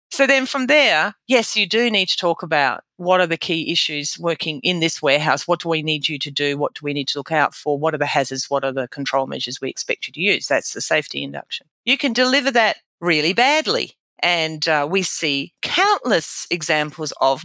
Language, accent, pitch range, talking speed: English, Australian, 155-240 Hz, 225 wpm